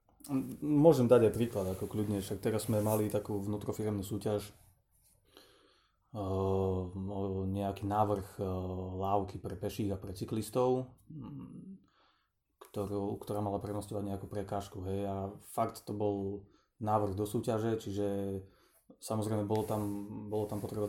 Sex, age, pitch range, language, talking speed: male, 20-39, 100-110 Hz, Slovak, 125 wpm